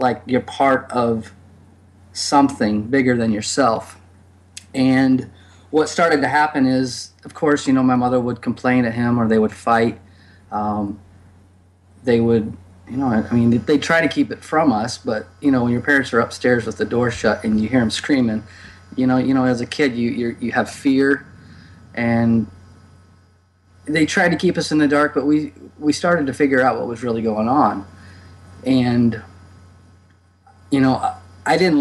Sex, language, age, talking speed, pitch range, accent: male, English, 30-49, 180 wpm, 95-130 Hz, American